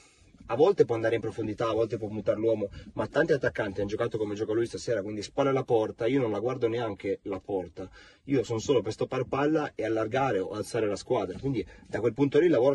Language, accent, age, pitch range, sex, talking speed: Italian, native, 30-49, 95-130 Hz, male, 235 wpm